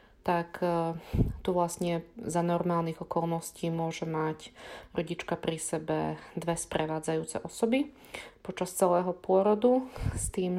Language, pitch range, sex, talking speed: Slovak, 155-175 Hz, female, 110 wpm